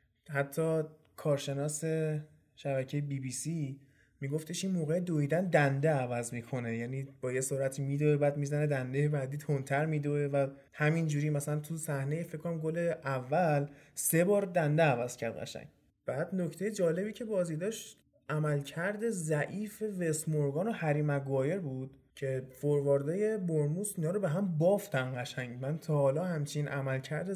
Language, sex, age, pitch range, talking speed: Persian, male, 20-39, 140-175 Hz, 150 wpm